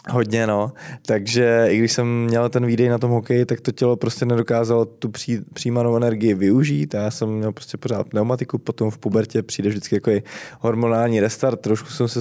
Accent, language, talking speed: native, Czech, 190 wpm